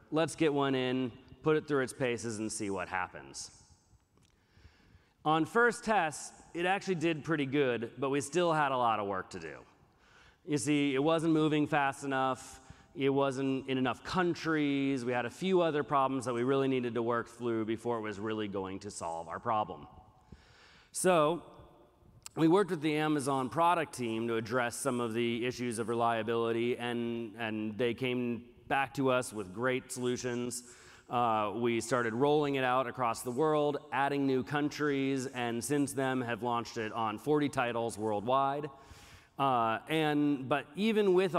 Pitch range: 115-145 Hz